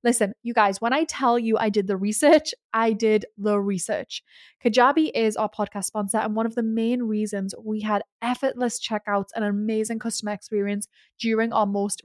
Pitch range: 205-245 Hz